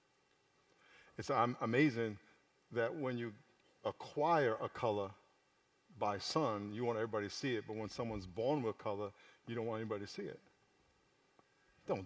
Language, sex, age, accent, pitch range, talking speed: English, male, 50-69, American, 125-165 Hz, 150 wpm